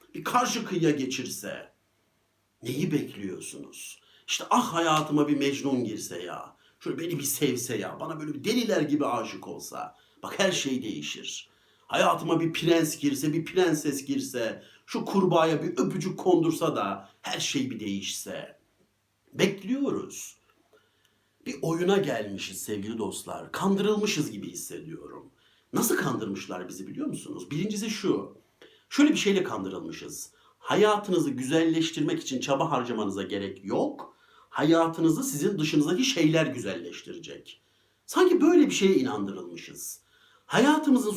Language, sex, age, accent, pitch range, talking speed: Turkish, male, 60-79, native, 150-240 Hz, 120 wpm